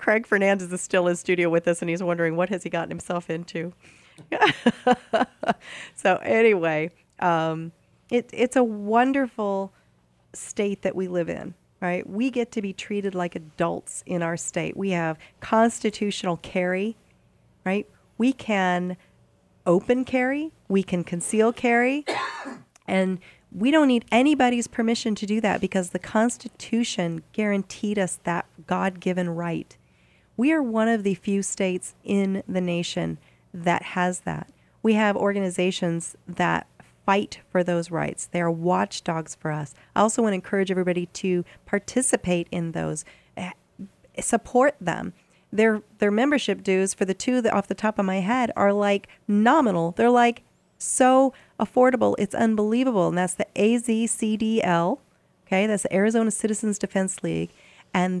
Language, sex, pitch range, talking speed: English, female, 175-225 Hz, 145 wpm